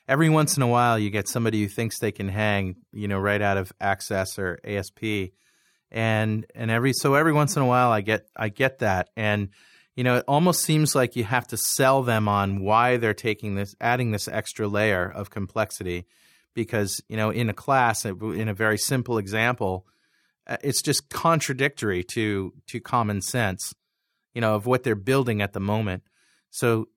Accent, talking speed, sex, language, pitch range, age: American, 190 wpm, male, English, 105-130 Hz, 30-49